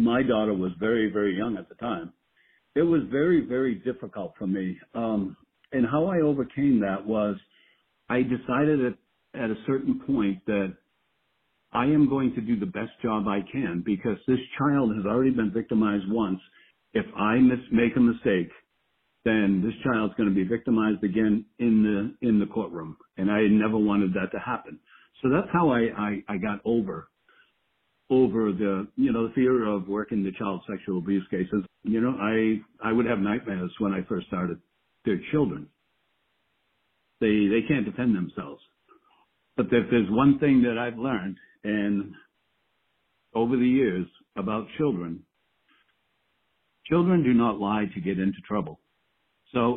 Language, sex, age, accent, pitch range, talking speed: English, male, 60-79, American, 105-125 Hz, 165 wpm